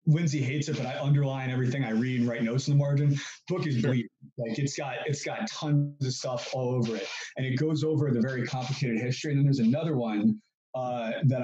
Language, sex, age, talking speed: English, male, 20-39, 235 wpm